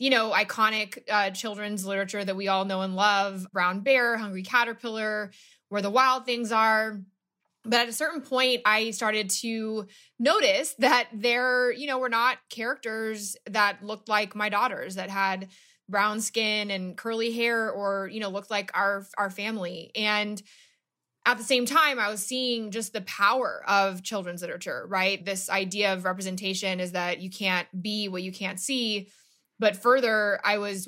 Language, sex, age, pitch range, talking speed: English, female, 20-39, 190-230 Hz, 175 wpm